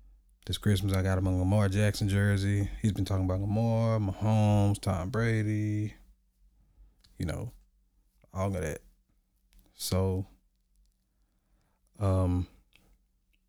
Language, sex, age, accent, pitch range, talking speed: English, male, 20-39, American, 70-105 Hz, 105 wpm